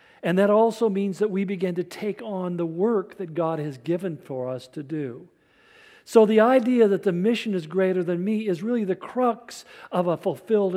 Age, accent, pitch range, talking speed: 50-69, American, 165-215 Hz, 205 wpm